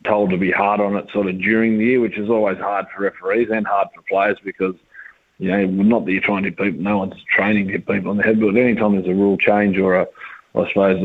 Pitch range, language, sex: 95-105 Hz, English, male